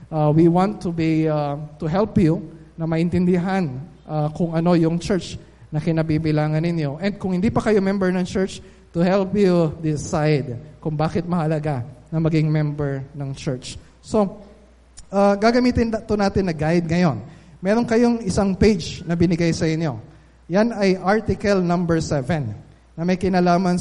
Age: 20-39